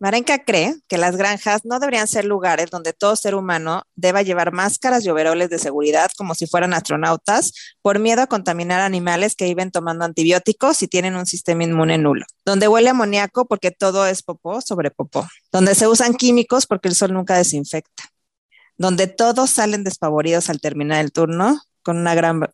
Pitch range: 165-215 Hz